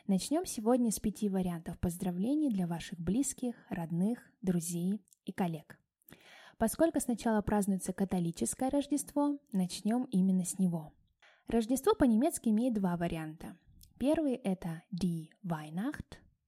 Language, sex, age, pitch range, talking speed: Russian, female, 20-39, 180-235 Hz, 115 wpm